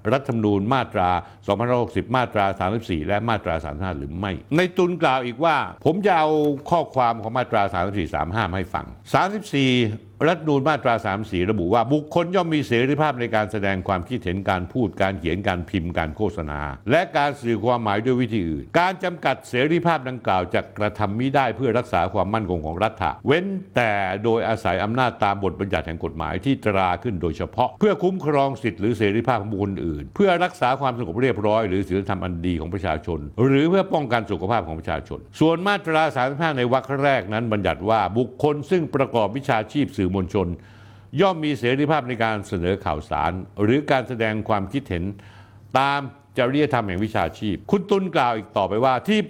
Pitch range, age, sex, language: 100-140 Hz, 60-79, male, Thai